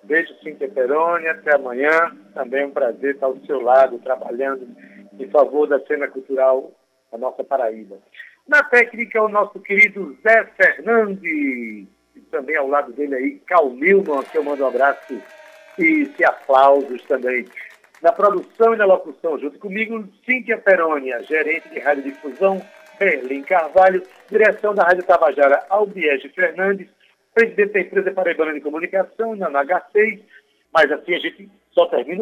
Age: 60-79